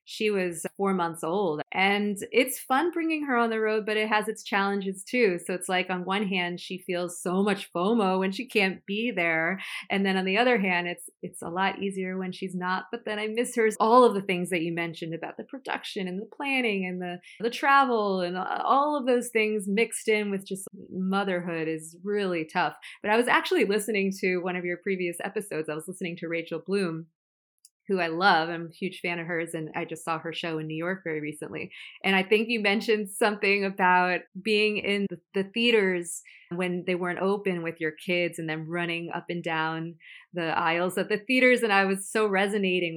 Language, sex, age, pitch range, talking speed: English, female, 30-49, 170-210 Hz, 220 wpm